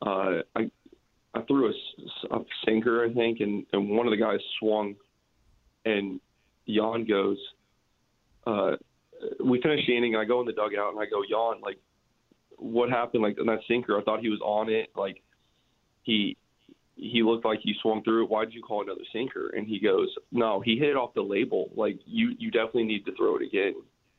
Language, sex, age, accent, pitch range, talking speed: English, male, 20-39, American, 105-125 Hz, 200 wpm